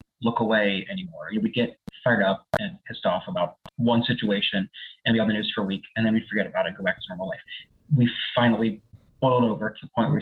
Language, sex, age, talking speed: English, male, 30-49, 235 wpm